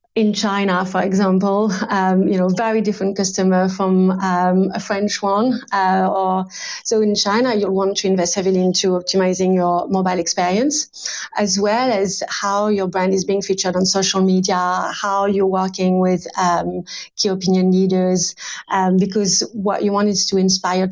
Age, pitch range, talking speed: 30-49, 185-205 Hz, 170 wpm